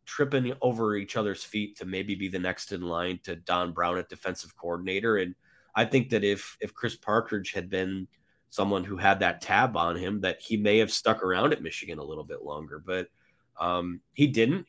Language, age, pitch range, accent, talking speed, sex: English, 30-49, 95-120 Hz, American, 210 wpm, male